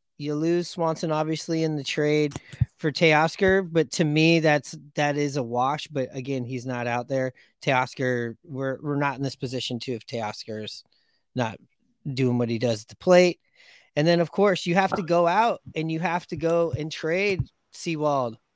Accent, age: American, 30-49